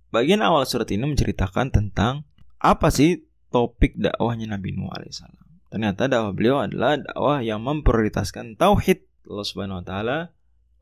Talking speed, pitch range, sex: 130 wpm, 90-130 Hz, male